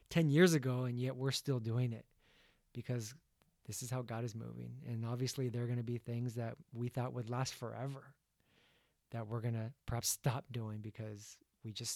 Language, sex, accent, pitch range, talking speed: English, male, American, 115-140 Hz, 200 wpm